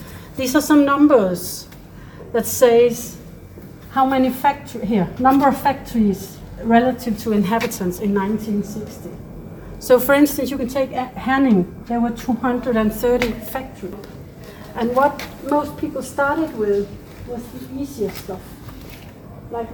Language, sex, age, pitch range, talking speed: English, female, 60-79, 205-255 Hz, 120 wpm